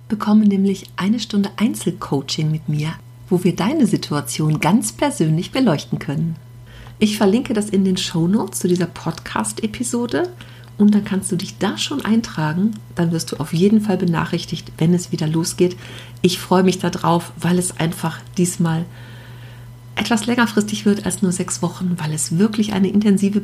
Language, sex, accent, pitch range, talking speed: German, female, German, 160-210 Hz, 160 wpm